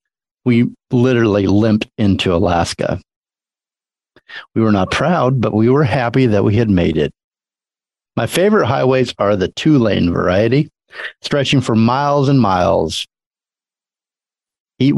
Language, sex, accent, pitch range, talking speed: English, male, American, 100-135 Hz, 125 wpm